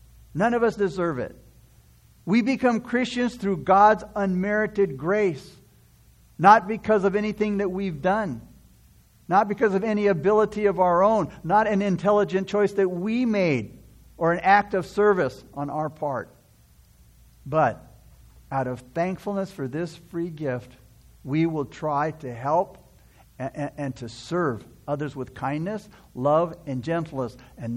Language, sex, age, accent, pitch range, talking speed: English, male, 60-79, American, 135-210 Hz, 140 wpm